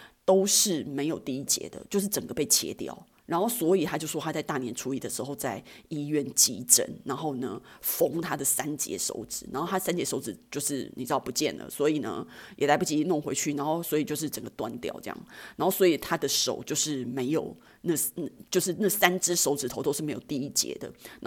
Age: 30-49